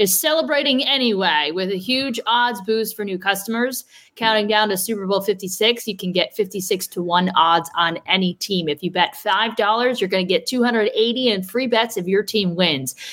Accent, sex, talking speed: American, female, 200 wpm